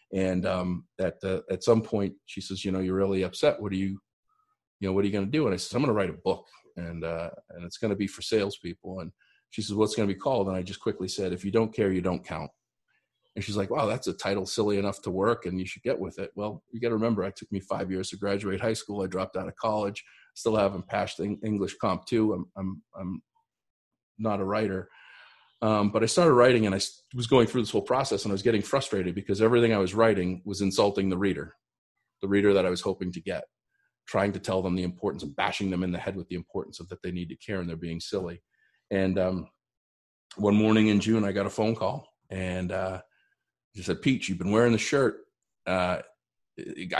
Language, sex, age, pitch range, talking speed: English, male, 40-59, 90-110 Hz, 250 wpm